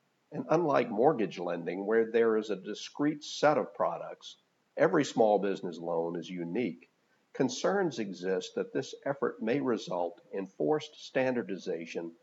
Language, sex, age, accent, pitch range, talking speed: English, male, 50-69, American, 95-155 Hz, 135 wpm